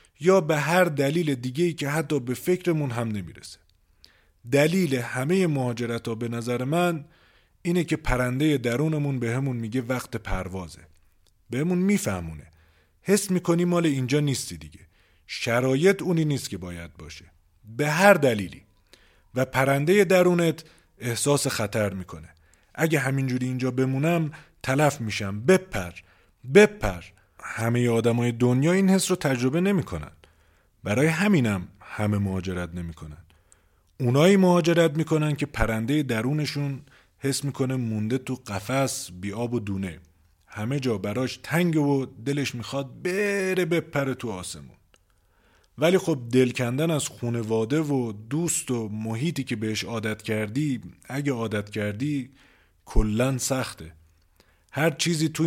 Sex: male